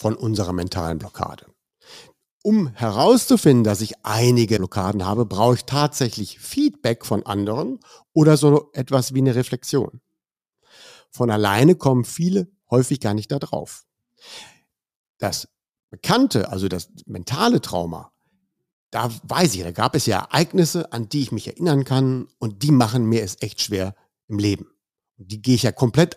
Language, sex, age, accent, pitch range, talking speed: German, male, 60-79, German, 105-145 Hz, 150 wpm